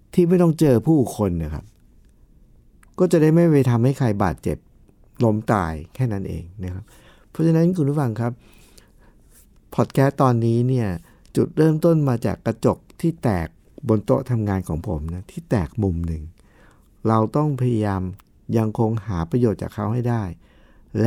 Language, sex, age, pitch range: Thai, male, 60-79, 95-130 Hz